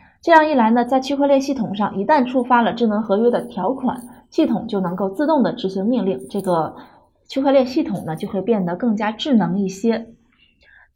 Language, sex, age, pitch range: Chinese, female, 20-39, 200-265 Hz